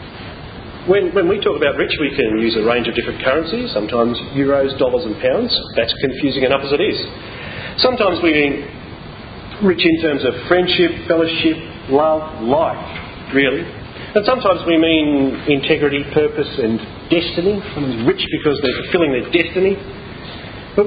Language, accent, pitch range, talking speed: English, Australian, 140-200 Hz, 150 wpm